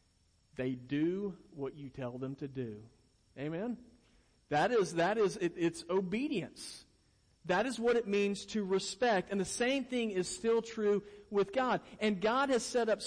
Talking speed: 170 wpm